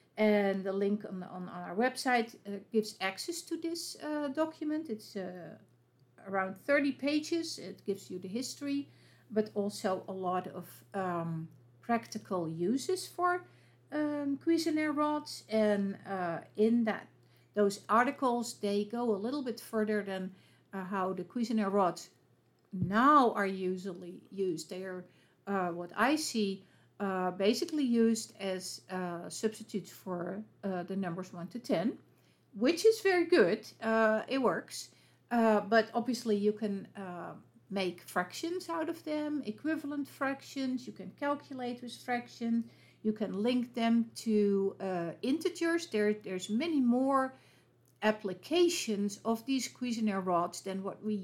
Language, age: English, 50-69